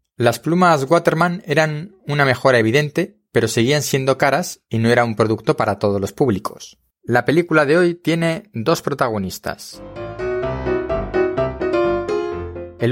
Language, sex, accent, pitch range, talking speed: Spanish, male, Spanish, 110-150 Hz, 130 wpm